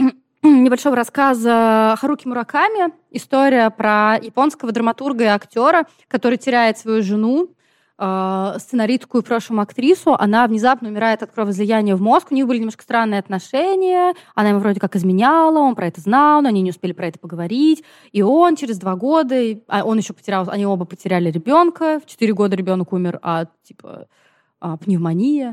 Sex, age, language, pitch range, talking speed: female, 20-39, Russian, 190-260 Hz, 160 wpm